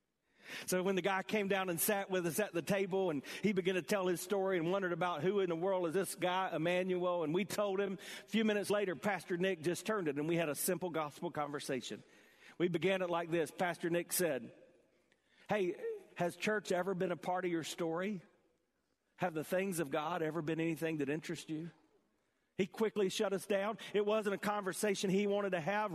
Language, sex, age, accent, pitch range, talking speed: English, male, 40-59, American, 175-205 Hz, 215 wpm